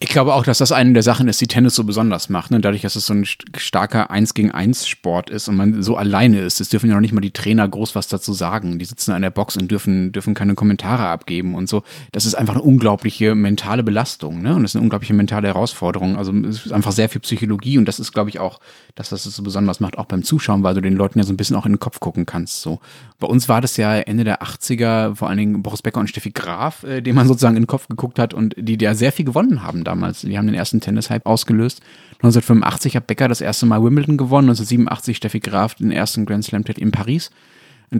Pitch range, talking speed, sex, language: 105-135 Hz, 260 wpm, male, German